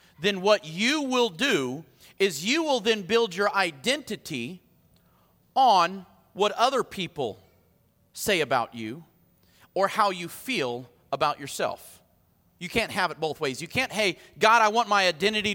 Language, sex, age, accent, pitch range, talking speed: English, male, 40-59, American, 190-300 Hz, 150 wpm